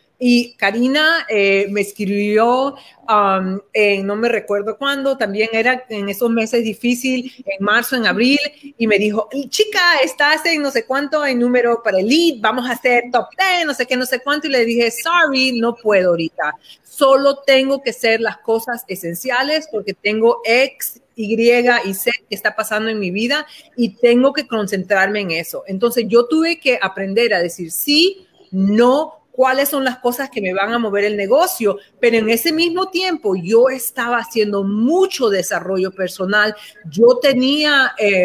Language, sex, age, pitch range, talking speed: Spanish, female, 40-59, 210-275 Hz, 175 wpm